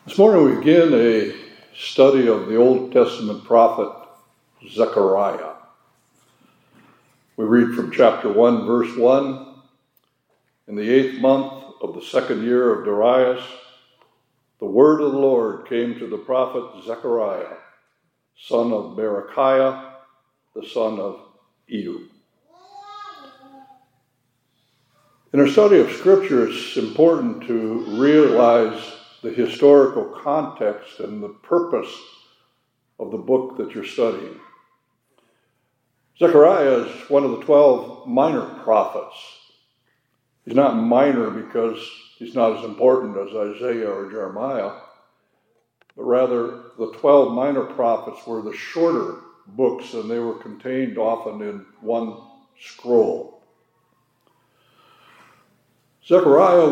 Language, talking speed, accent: English, 110 wpm, American